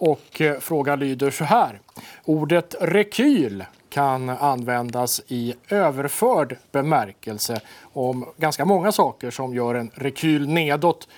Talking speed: 115 wpm